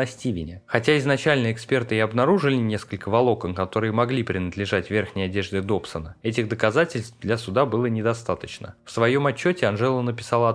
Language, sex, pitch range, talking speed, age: Russian, male, 105-130 Hz, 150 wpm, 20-39